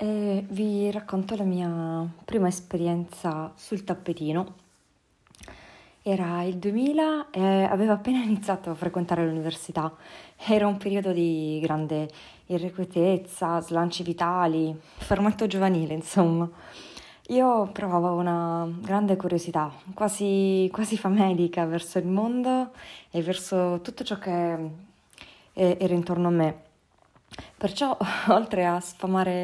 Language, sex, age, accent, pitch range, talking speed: Italian, female, 20-39, native, 175-210 Hz, 110 wpm